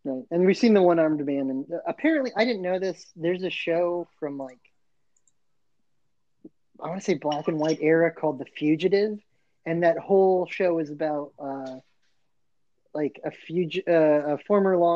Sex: male